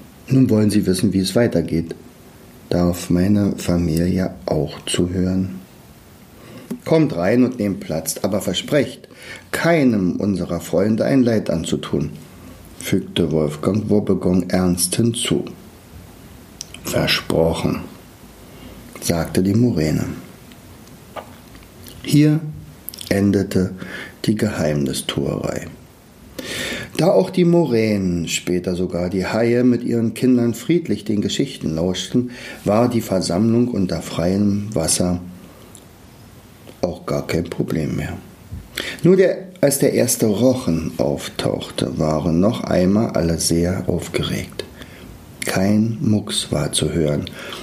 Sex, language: male, German